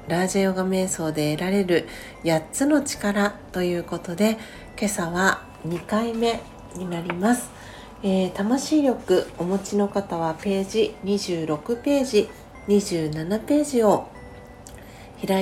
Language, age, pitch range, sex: Japanese, 40-59, 175-210 Hz, female